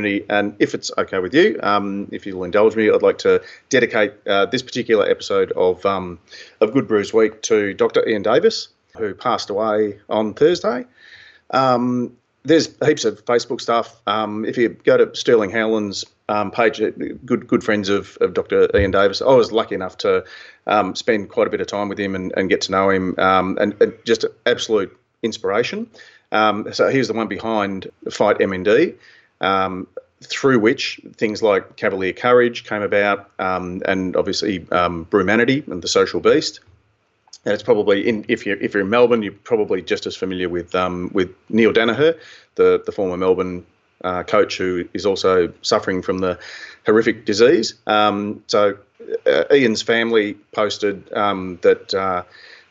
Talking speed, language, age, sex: 175 wpm, English, 40-59, male